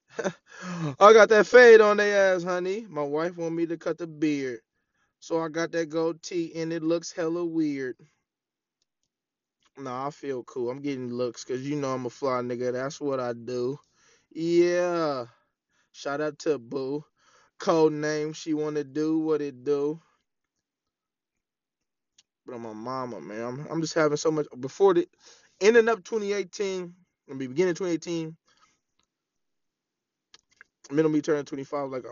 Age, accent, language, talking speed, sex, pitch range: 20-39, American, English, 155 wpm, male, 130-165 Hz